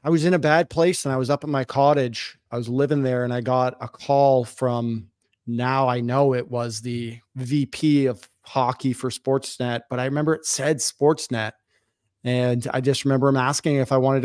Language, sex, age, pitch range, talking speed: English, male, 30-49, 120-140 Hz, 205 wpm